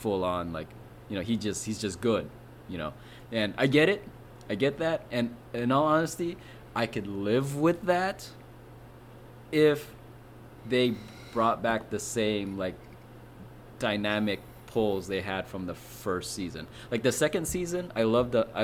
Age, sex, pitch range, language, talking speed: 20-39, male, 100-125 Hz, English, 160 wpm